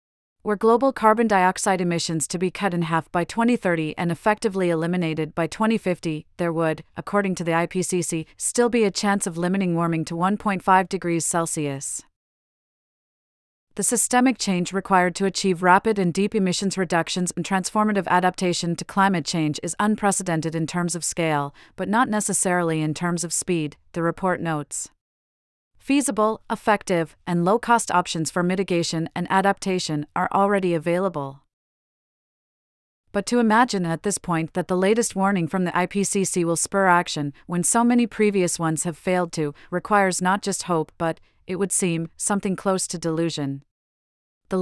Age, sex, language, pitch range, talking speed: 40-59, female, English, 165-195 Hz, 155 wpm